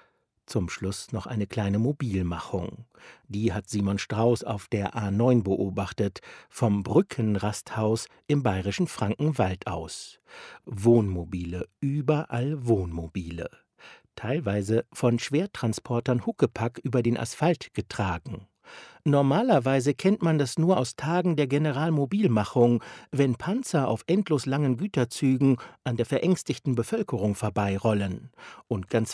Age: 60-79